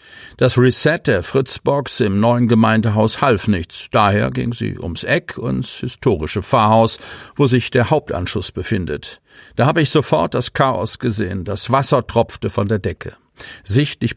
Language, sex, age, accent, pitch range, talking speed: German, male, 50-69, German, 100-125 Hz, 155 wpm